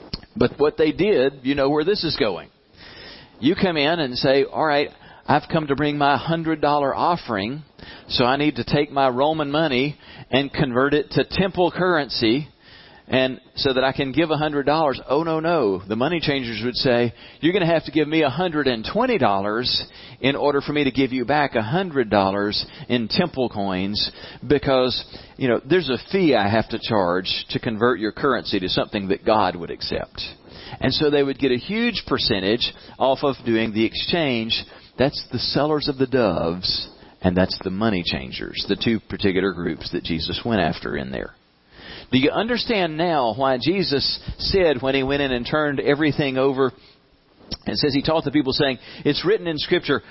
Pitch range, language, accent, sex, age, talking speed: 125-160 Hz, English, American, male, 40-59, 185 wpm